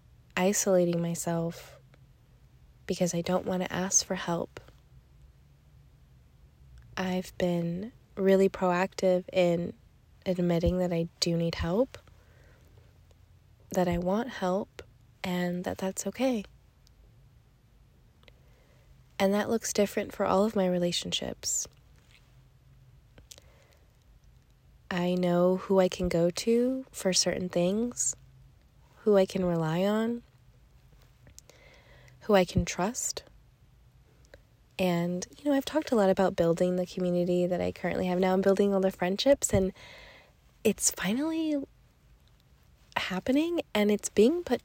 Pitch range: 130-195 Hz